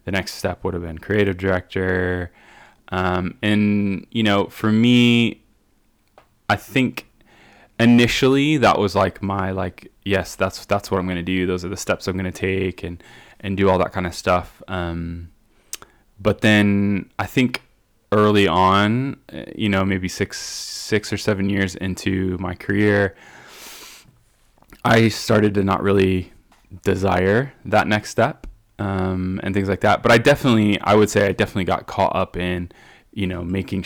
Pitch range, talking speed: 95-105 Hz, 165 wpm